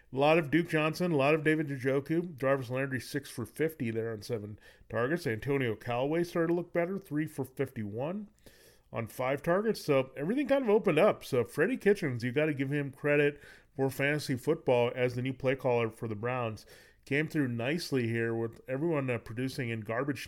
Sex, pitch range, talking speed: male, 115-145 Hz, 195 wpm